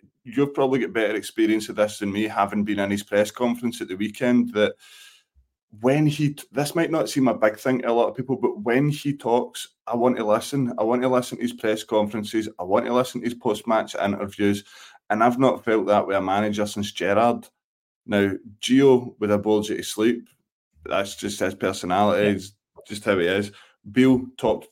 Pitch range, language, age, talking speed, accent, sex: 105-125 Hz, English, 20-39, 210 wpm, British, male